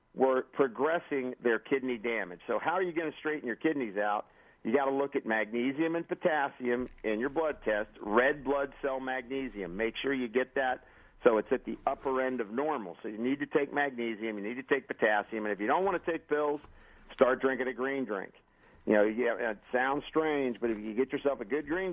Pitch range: 115-145 Hz